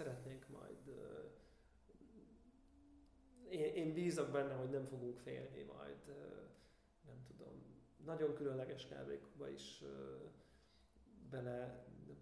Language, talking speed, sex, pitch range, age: Hungarian, 90 wpm, male, 125-145 Hz, 30-49